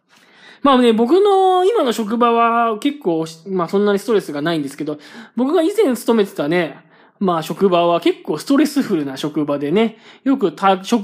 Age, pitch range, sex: 20-39, 170-240 Hz, male